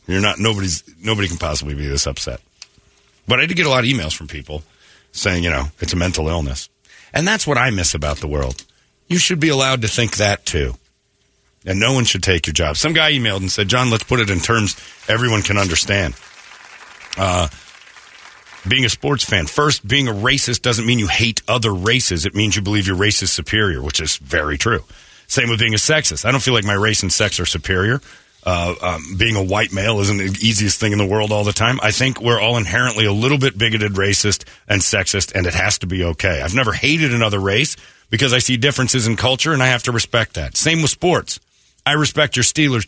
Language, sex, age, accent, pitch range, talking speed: English, male, 40-59, American, 95-125 Hz, 230 wpm